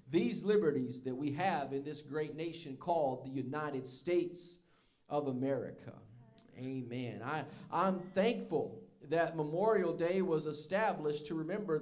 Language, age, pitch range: English, 40-59, 150-210 Hz